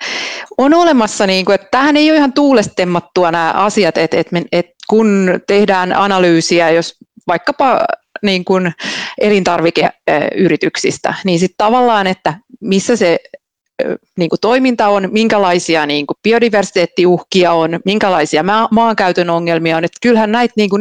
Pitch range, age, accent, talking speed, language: 175-230 Hz, 30-49, native, 100 wpm, Finnish